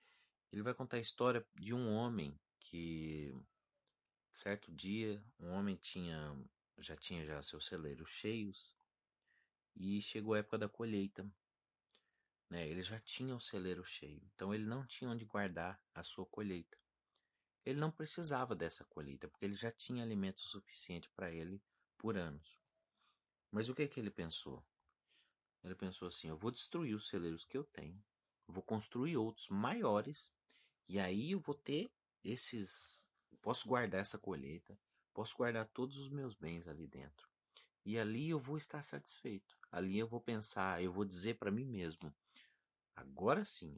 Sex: male